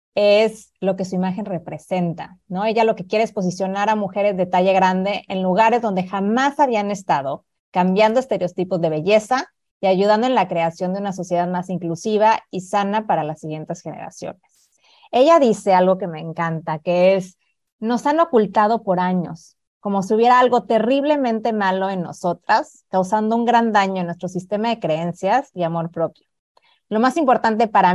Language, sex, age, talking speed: Spanish, female, 30-49, 175 wpm